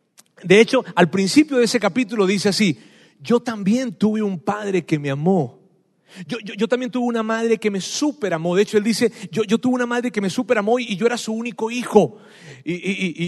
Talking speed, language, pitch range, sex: 210 wpm, Spanish, 175-225 Hz, male